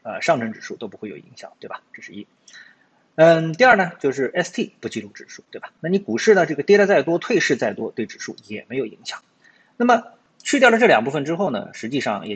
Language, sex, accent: Chinese, male, native